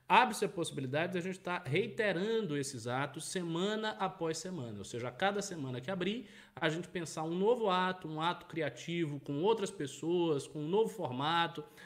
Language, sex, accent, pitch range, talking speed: Portuguese, male, Brazilian, 140-195 Hz, 180 wpm